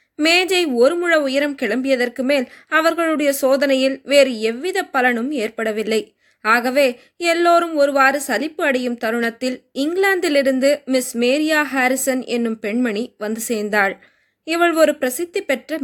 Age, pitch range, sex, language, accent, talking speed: 20-39, 240-310 Hz, female, Tamil, native, 110 wpm